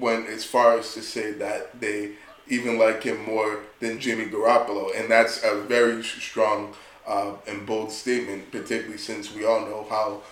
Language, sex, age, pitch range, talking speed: English, male, 20-39, 105-115 Hz, 175 wpm